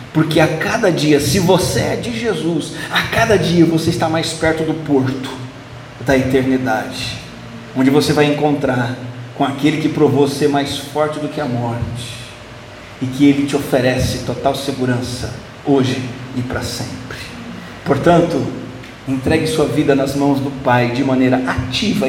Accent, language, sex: Brazilian, Portuguese, male